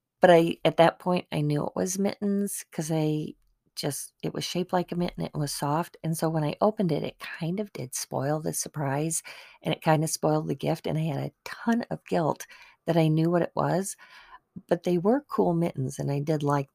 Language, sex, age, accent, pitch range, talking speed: English, female, 40-59, American, 150-180 Hz, 230 wpm